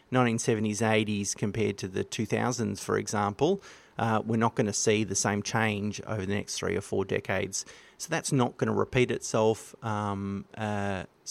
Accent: Australian